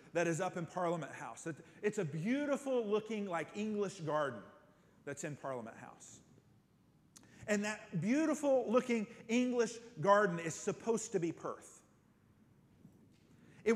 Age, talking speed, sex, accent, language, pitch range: 40-59, 125 wpm, male, American, English, 200-270 Hz